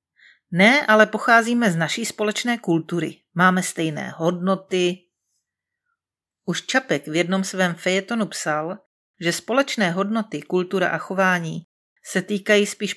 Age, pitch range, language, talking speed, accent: 40-59, 170-205 Hz, Czech, 120 wpm, native